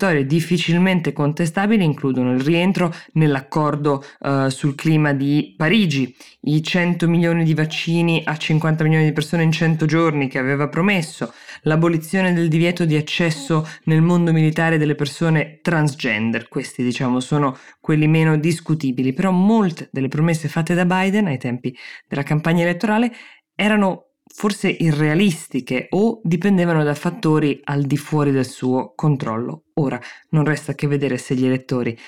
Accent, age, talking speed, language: native, 20-39, 140 wpm, Italian